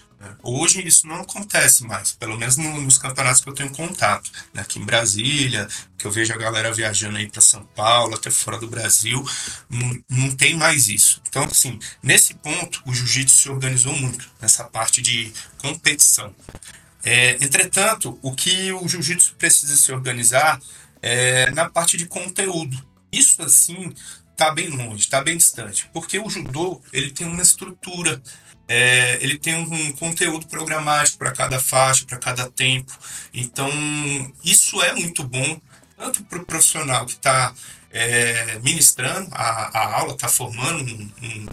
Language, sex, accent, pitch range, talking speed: Portuguese, male, Brazilian, 120-165 Hz, 155 wpm